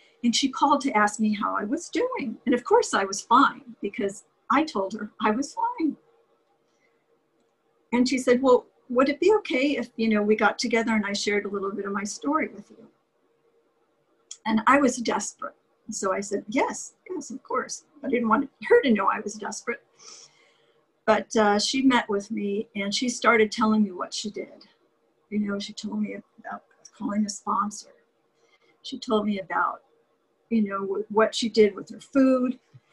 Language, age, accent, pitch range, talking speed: English, 50-69, American, 205-255 Hz, 190 wpm